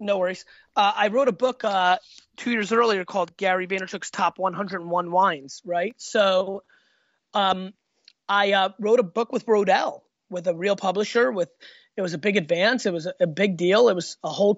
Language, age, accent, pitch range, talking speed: English, 30-49, American, 175-215 Hz, 195 wpm